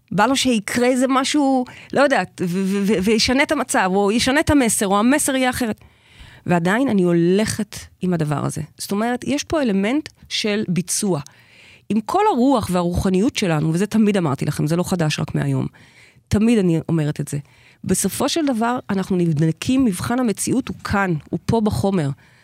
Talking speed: 175 wpm